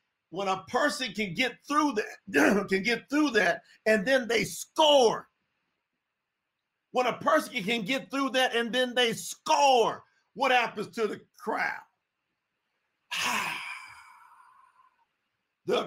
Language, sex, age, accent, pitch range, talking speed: English, male, 50-69, American, 220-265 Hz, 120 wpm